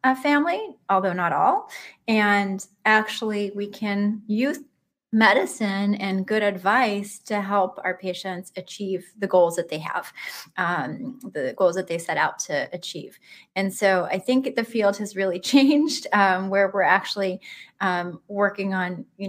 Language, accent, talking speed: English, American, 150 wpm